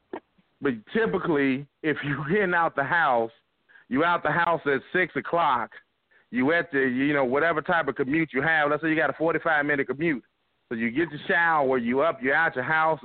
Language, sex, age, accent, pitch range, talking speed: English, male, 40-59, American, 140-175 Hz, 200 wpm